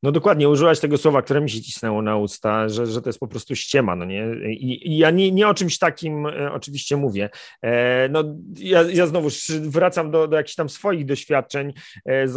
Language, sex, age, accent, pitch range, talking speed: Polish, male, 40-59, native, 130-155 Hz, 205 wpm